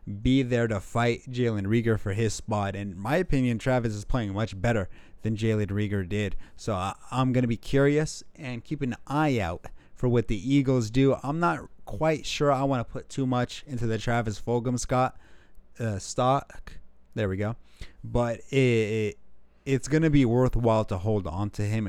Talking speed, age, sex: 195 wpm, 30-49, male